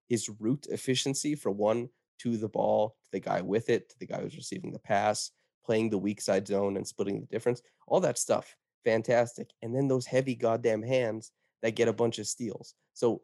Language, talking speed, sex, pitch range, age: English, 210 wpm, male, 105-120 Hz, 20-39